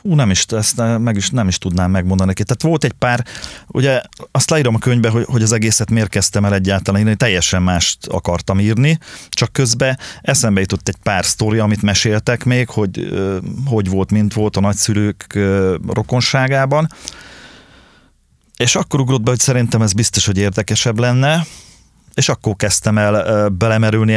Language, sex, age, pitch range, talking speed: Hungarian, male, 30-49, 100-125 Hz, 160 wpm